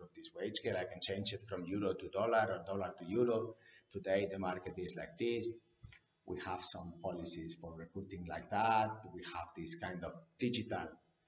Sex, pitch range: male, 85-110 Hz